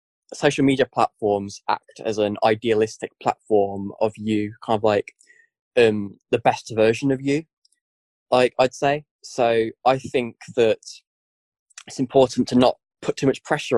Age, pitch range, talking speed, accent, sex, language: 10-29, 110-140 Hz, 150 wpm, British, male, English